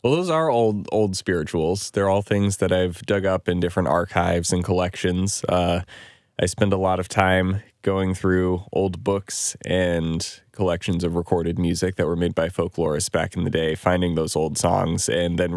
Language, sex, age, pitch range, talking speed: English, male, 20-39, 85-100 Hz, 190 wpm